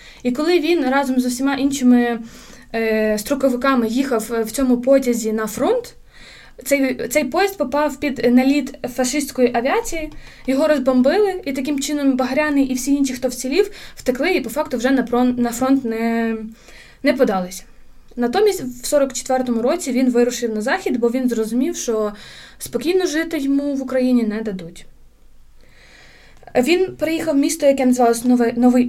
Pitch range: 240-285 Hz